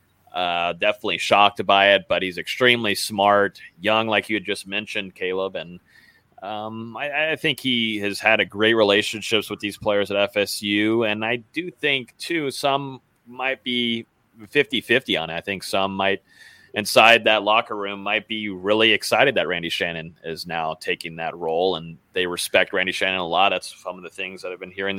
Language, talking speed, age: English, 190 wpm, 30-49